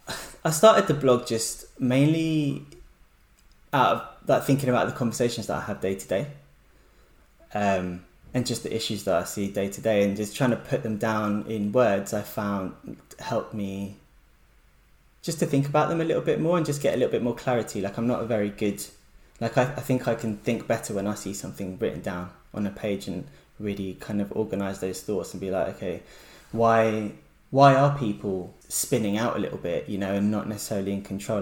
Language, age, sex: English, 10-29, male